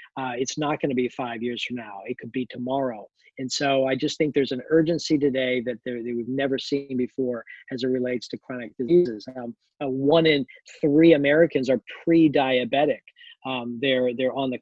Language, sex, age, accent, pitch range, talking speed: English, male, 40-59, American, 130-165 Hz, 190 wpm